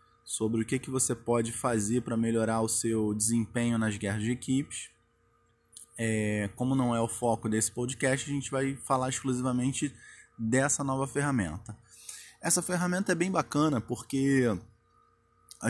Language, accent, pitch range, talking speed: Portuguese, Brazilian, 115-150 Hz, 145 wpm